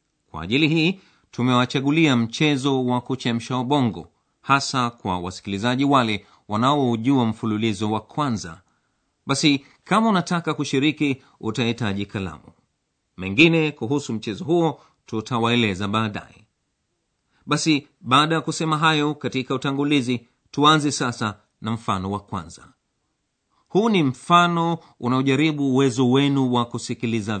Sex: male